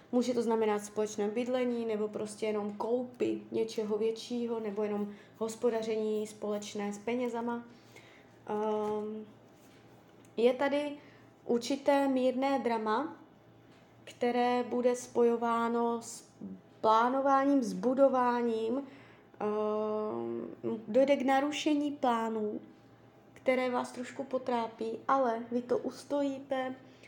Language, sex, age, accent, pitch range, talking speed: Czech, female, 20-39, native, 215-250 Hz, 90 wpm